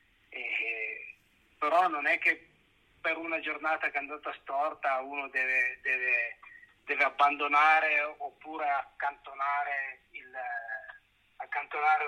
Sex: male